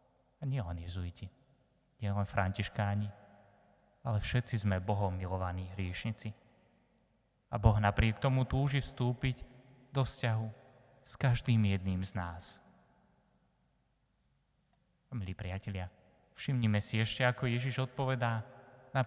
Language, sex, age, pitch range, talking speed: Slovak, male, 20-39, 95-120 Hz, 105 wpm